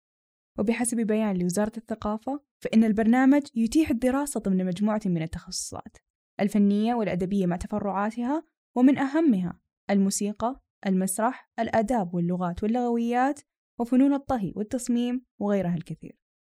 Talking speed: 100 wpm